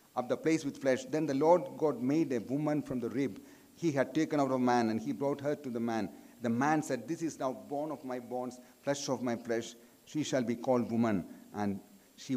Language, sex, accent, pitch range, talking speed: Malayalam, male, native, 140-215 Hz, 240 wpm